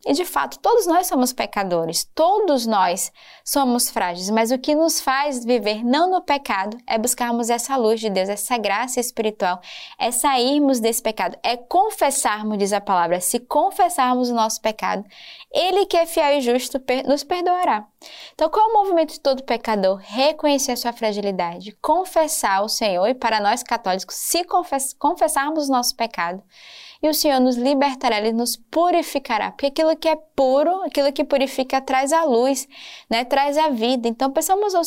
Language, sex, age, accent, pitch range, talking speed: Portuguese, female, 10-29, Brazilian, 225-295 Hz, 175 wpm